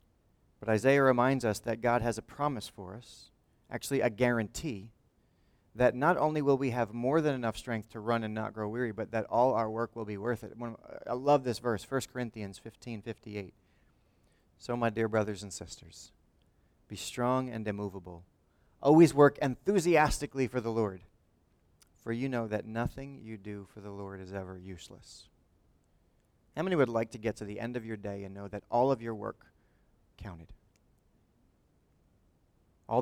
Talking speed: 175 wpm